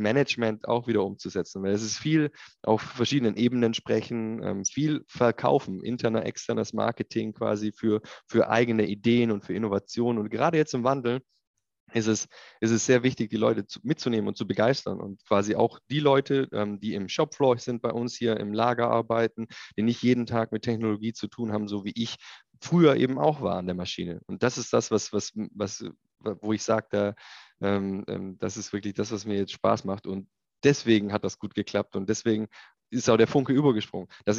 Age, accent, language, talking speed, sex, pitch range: 20-39, German, German, 190 wpm, male, 105-130 Hz